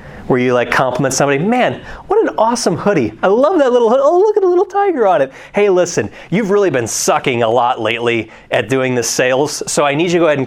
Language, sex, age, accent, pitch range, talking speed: English, male, 30-49, American, 130-210 Hz, 245 wpm